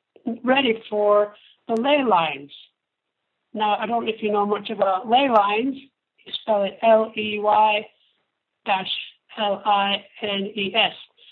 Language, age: English, 60-79